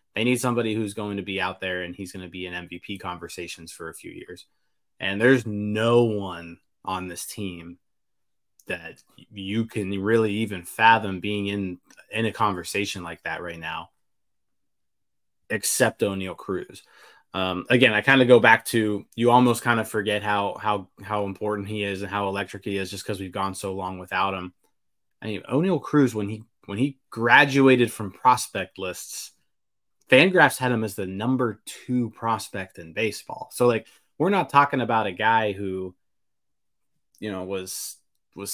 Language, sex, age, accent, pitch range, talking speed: English, male, 20-39, American, 95-115 Hz, 175 wpm